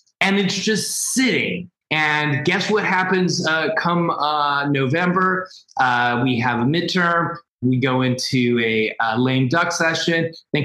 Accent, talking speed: American, 145 wpm